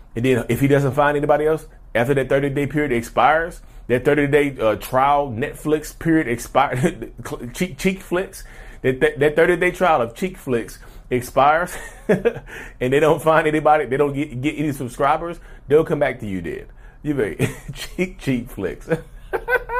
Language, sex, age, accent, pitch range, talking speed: English, male, 30-49, American, 95-135 Hz, 165 wpm